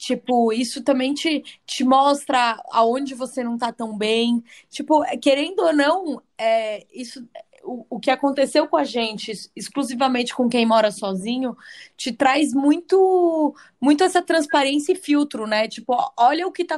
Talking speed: 155 wpm